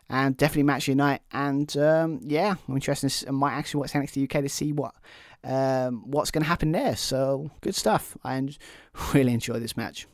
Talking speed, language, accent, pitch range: 195 wpm, English, British, 125-150 Hz